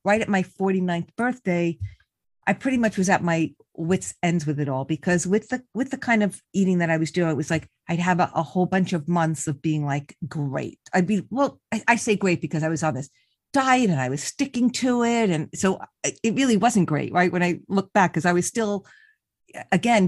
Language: English